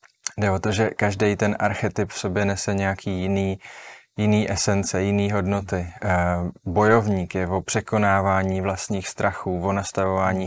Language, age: Czech, 20-39